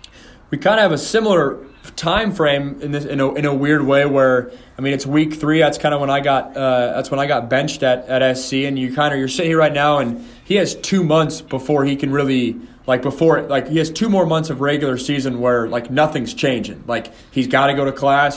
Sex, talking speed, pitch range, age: male, 250 wpm, 130-145 Hz, 20-39